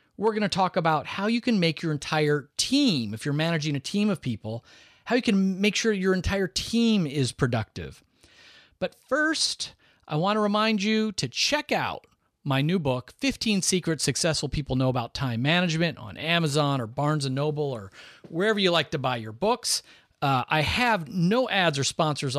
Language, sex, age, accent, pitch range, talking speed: English, male, 40-59, American, 140-210 Hz, 190 wpm